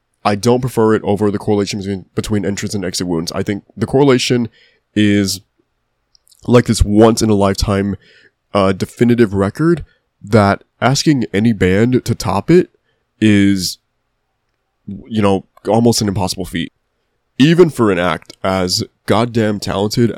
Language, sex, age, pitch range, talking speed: English, male, 20-39, 100-115 Hz, 135 wpm